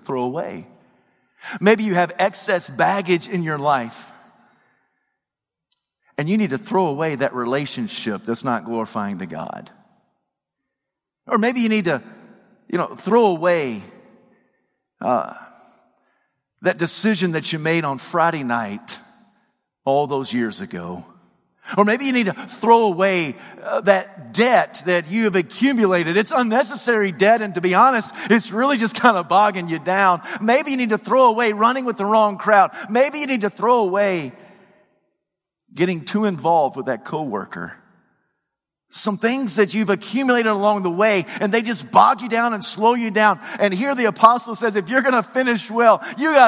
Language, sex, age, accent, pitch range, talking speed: English, male, 50-69, American, 175-230 Hz, 165 wpm